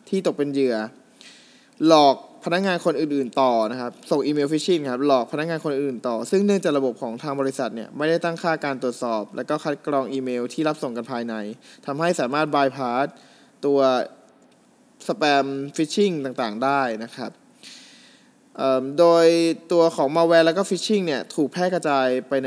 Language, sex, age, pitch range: Thai, male, 20-39, 135-195 Hz